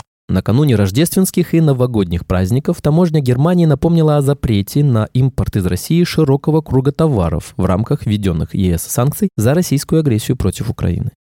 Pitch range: 100-160 Hz